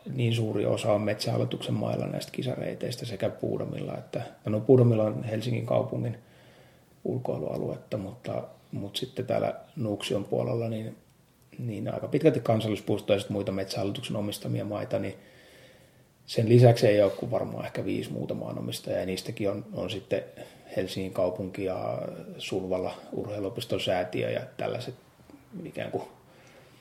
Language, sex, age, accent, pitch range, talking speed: Finnish, male, 30-49, native, 105-120 Hz, 125 wpm